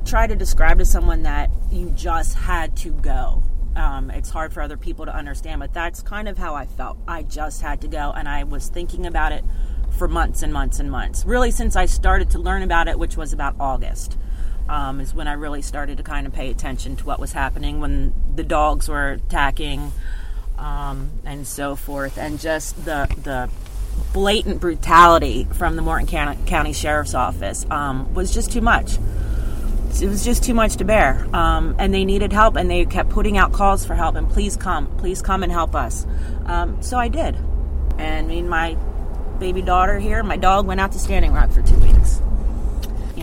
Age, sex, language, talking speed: 30-49, female, English, 205 wpm